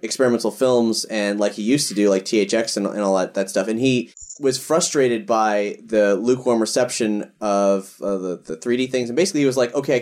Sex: male